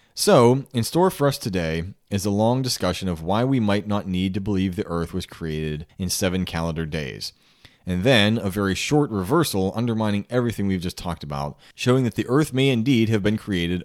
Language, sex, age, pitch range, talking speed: English, male, 30-49, 90-115 Hz, 205 wpm